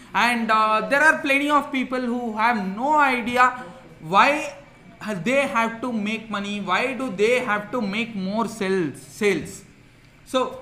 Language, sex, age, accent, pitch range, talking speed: English, male, 20-39, Indian, 195-255 Hz, 155 wpm